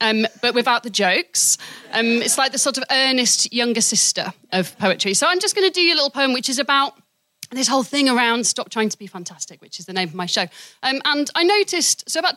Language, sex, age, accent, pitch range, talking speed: English, female, 30-49, British, 215-295 Hz, 245 wpm